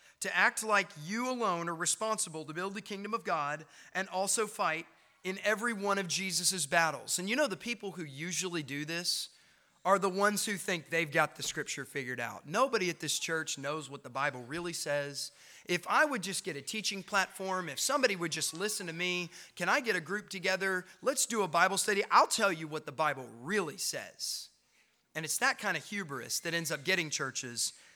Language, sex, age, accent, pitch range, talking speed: English, male, 30-49, American, 150-215 Hz, 210 wpm